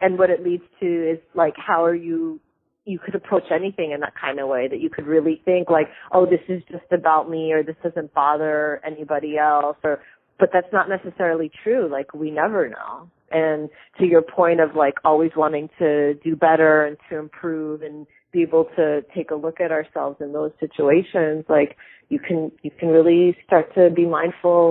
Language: English